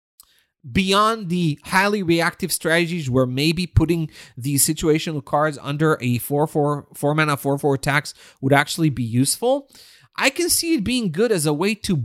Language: English